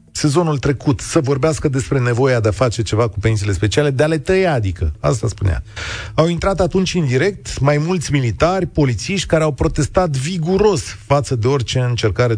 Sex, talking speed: male, 180 wpm